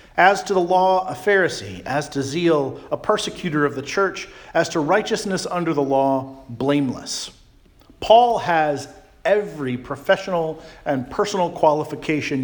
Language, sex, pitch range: English, male, 140-190 Hz